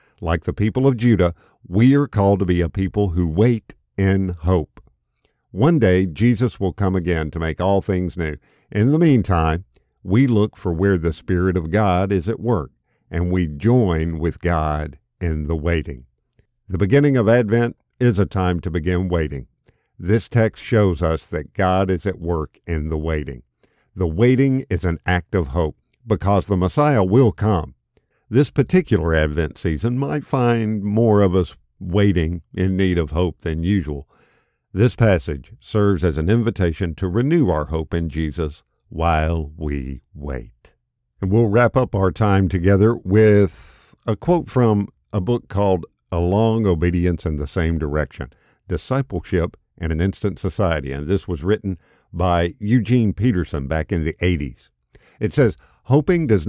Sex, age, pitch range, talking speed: male, 50-69, 80-110 Hz, 165 wpm